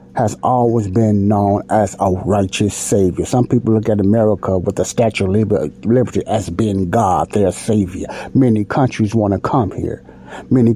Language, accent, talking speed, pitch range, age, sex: English, American, 165 wpm, 85-130 Hz, 60-79, male